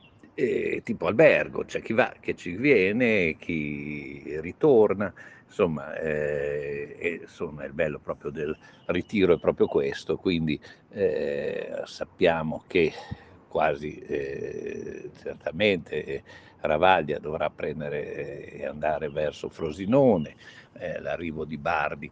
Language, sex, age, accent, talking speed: Italian, male, 60-79, native, 110 wpm